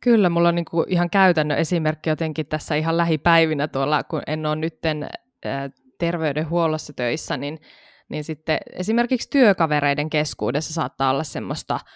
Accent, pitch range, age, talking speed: native, 150-180 Hz, 20-39, 130 wpm